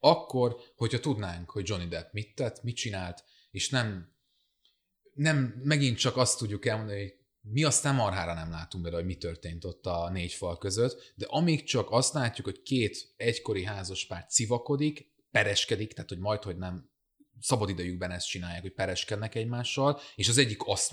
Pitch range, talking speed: 95-130 Hz, 175 wpm